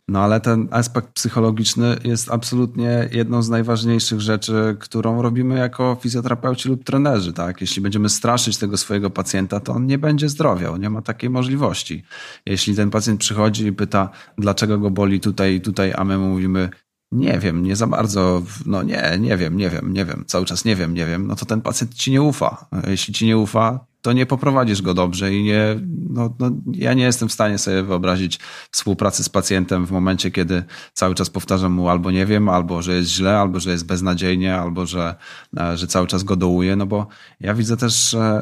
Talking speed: 200 wpm